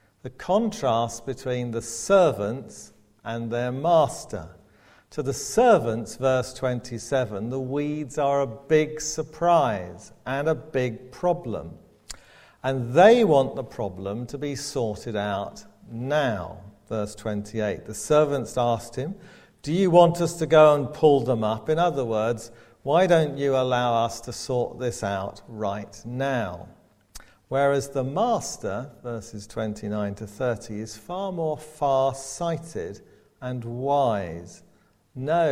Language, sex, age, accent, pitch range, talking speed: English, male, 50-69, British, 105-145 Hz, 130 wpm